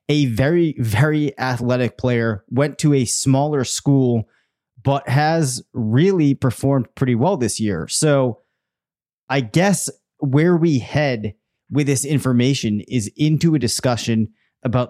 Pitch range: 115-135 Hz